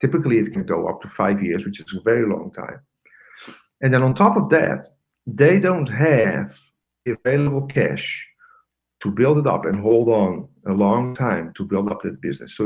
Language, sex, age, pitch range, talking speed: English, male, 50-69, 100-140 Hz, 195 wpm